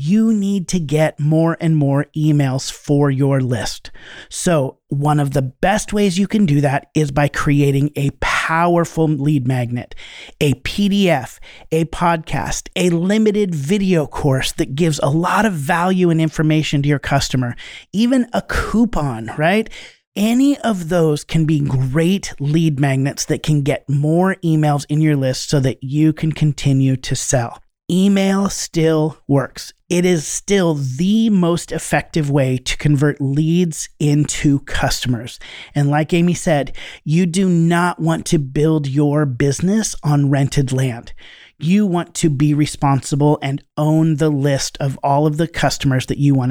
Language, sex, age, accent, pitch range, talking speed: English, male, 30-49, American, 140-170 Hz, 155 wpm